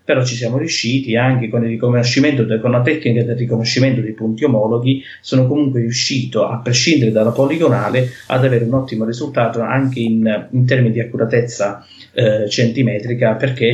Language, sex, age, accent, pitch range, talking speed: Italian, male, 30-49, native, 110-130 Hz, 165 wpm